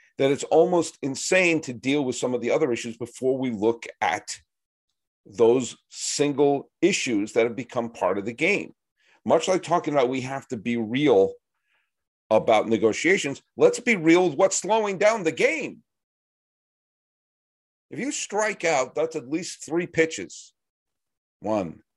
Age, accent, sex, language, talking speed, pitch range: 50-69, American, male, English, 155 wpm, 100-155 Hz